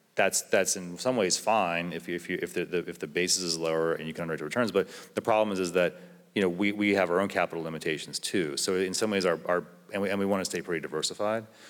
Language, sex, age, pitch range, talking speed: English, male, 30-49, 80-95 Hz, 280 wpm